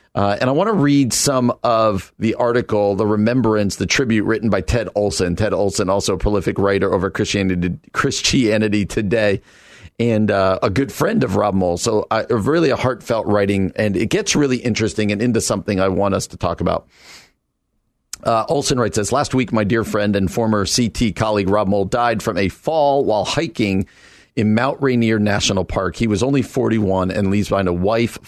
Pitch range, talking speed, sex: 95-120 Hz, 195 wpm, male